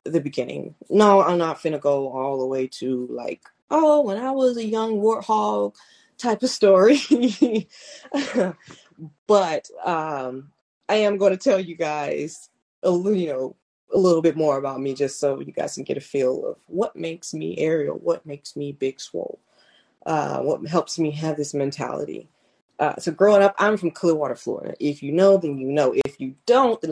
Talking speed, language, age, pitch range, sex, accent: 185 wpm, English, 20-39, 150-220 Hz, female, American